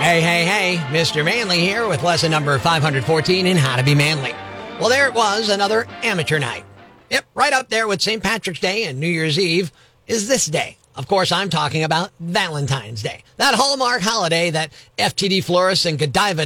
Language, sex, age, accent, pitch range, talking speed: English, male, 50-69, American, 160-230 Hz, 190 wpm